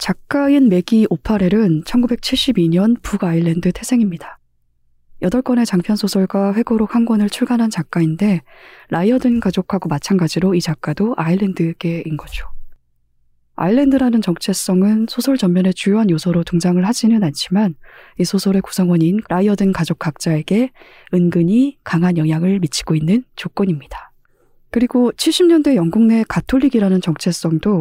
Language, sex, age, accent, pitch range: Korean, female, 20-39, native, 165-220 Hz